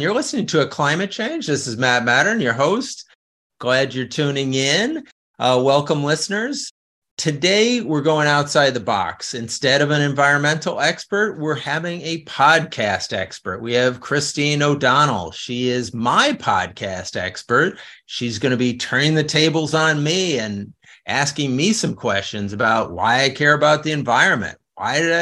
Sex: male